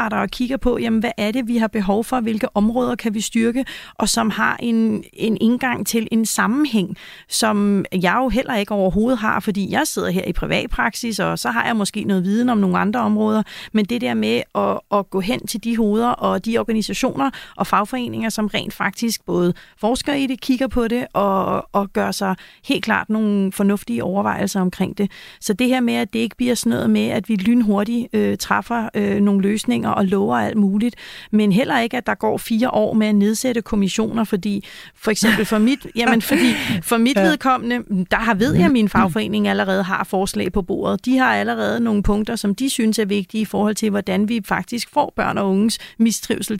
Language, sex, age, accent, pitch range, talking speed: Danish, female, 30-49, native, 205-235 Hz, 205 wpm